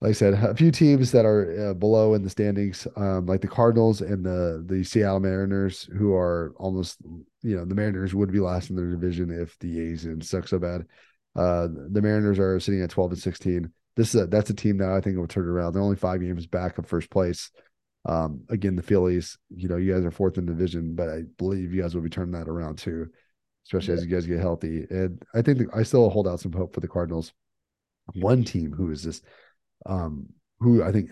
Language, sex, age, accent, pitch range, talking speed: English, male, 30-49, American, 85-105 Hz, 240 wpm